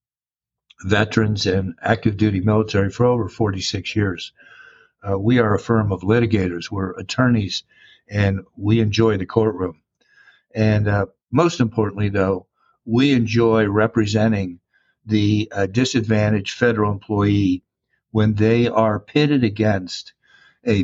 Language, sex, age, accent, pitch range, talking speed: English, male, 60-79, American, 100-115 Hz, 120 wpm